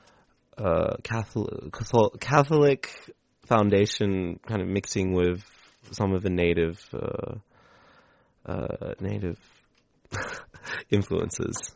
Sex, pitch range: male, 90-110 Hz